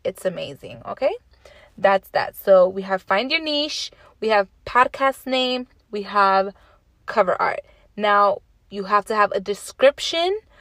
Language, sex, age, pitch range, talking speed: English, female, 20-39, 200-250 Hz, 145 wpm